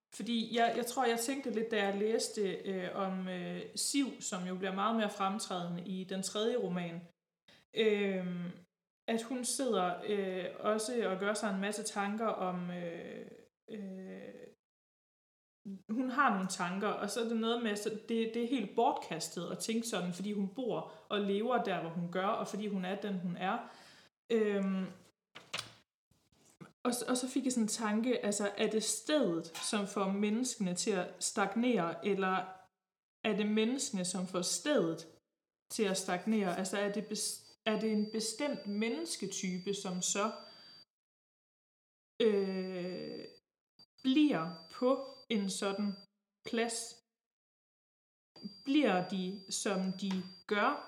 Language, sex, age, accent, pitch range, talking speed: Danish, female, 20-39, native, 190-230 Hz, 135 wpm